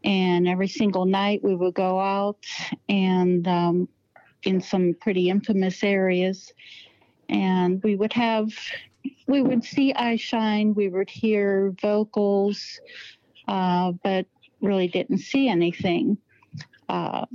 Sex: female